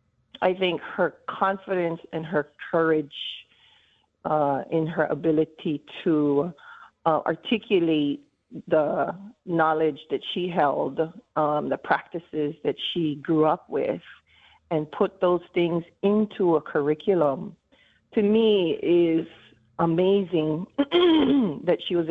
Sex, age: female, 40-59